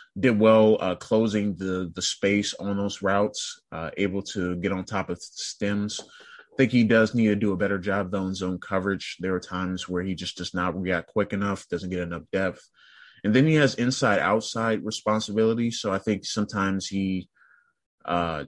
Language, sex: English, male